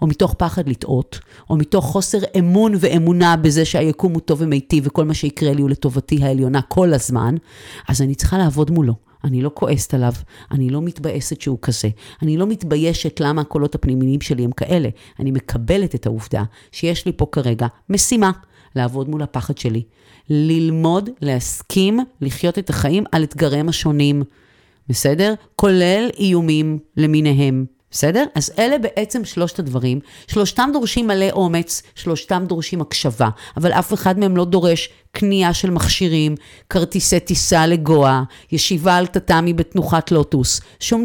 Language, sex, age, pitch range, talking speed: Hebrew, female, 40-59, 135-180 Hz, 150 wpm